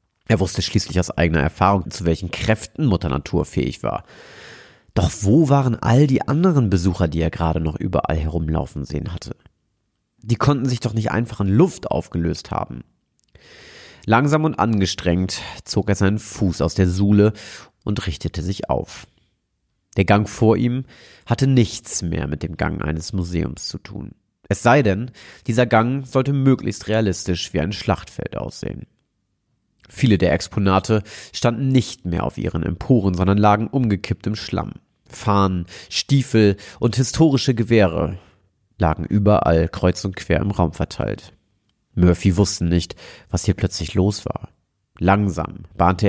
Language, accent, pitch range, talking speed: German, German, 85-110 Hz, 150 wpm